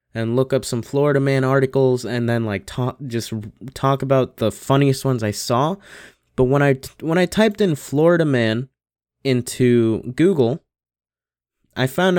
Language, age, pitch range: English, 20-39, 110-145 Hz